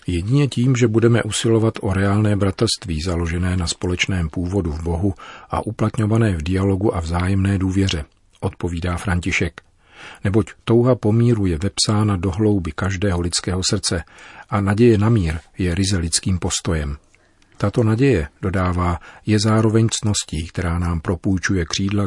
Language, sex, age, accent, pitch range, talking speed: Czech, male, 50-69, native, 85-105 Hz, 140 wpm